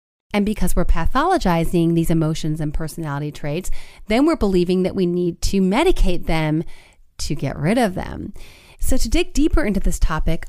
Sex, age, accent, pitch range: female, 30-49, American, 175-240 Hz